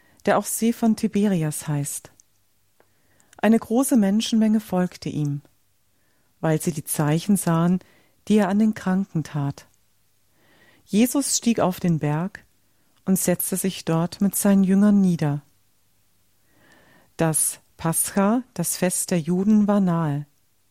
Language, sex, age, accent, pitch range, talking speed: German, female, 40-59, German, 145-200 Hz, 125 wpm